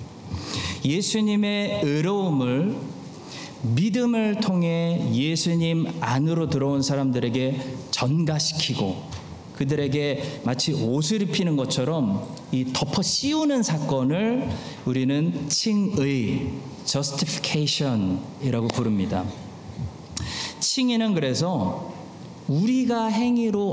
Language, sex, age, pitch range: Korean, male, 40-59, 135-190 Hz